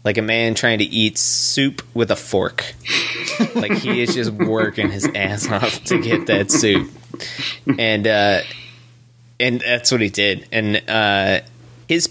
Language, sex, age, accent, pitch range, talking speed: English, male, 20-39, American, 105-130 Hz, 160 wpm